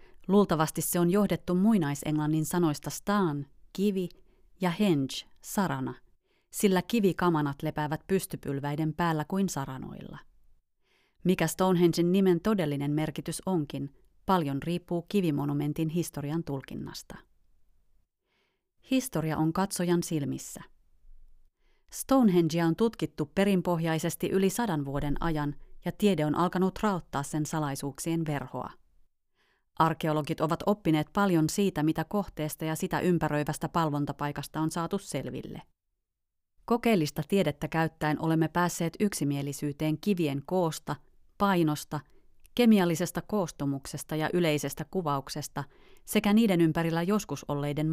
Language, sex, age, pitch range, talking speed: Finnish, female, 30-49, 145-185 Hz, 105 wpm